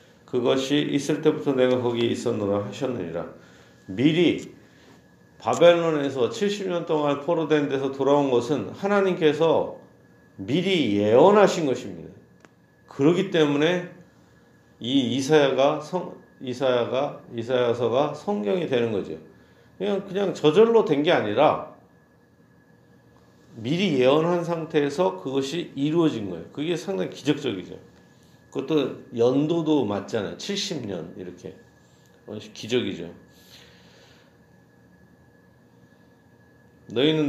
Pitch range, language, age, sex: 120-155 Hz, Korean, 40-59, male